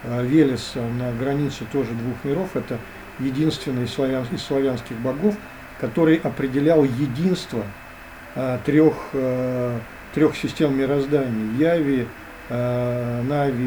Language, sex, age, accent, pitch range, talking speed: Russian, male, 50-69, native, 120-150 Hz, 90 wpm